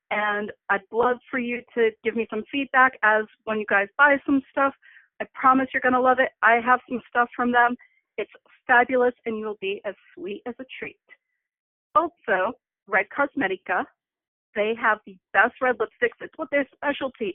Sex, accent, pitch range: female, American, 225-275 Hz